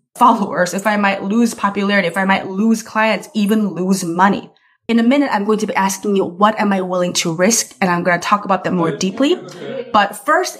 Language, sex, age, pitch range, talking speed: English, female, 20-39, 180-220 Hz, 225 wpm